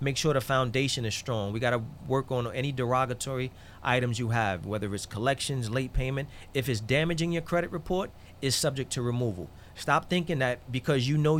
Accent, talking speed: American, 190 wpm